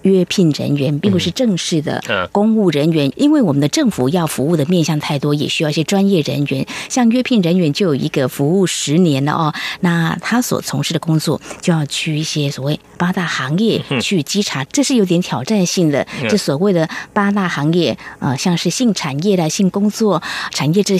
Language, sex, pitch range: Chinese, female, 155-210 Hz